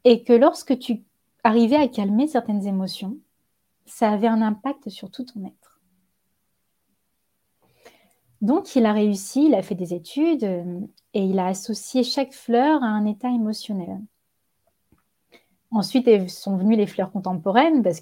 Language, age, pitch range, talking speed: French, 20-39, 190-235 Hz, 145 wpm